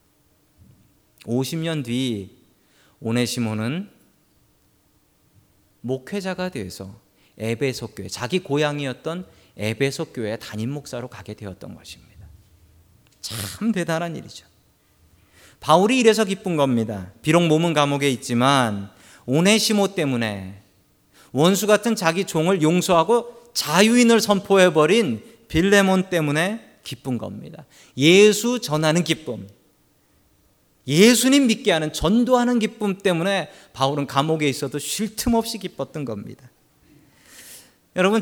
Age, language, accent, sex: 40-59, Korean, native, male